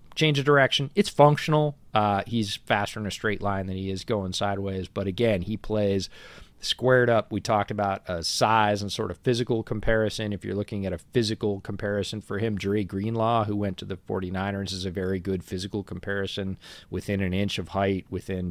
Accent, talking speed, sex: American, 200 wpm, male